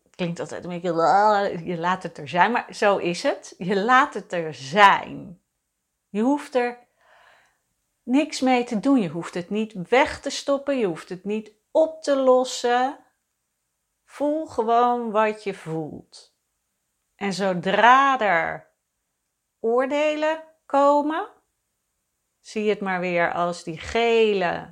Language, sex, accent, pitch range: Dutch, female, Dutch, 185-255 Hz